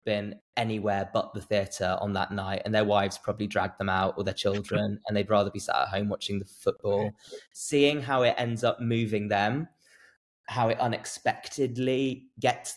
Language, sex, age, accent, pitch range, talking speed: English, male, 20-39, British, 110-135 Hz, 185 wpm